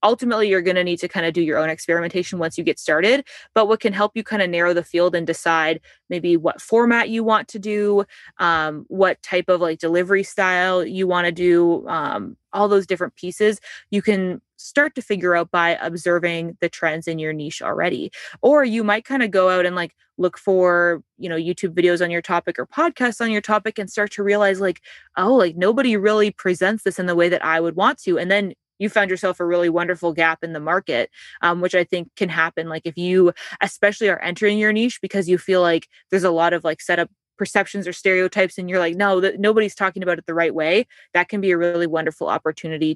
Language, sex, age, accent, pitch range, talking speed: English, female, 20-39, American, 170-200 Hz, 230 wpm